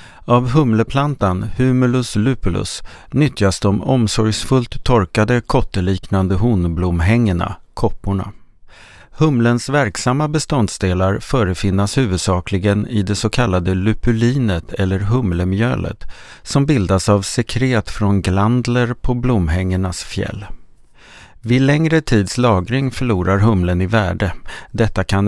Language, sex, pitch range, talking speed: English, male, 95-120 Hz, 100 wpm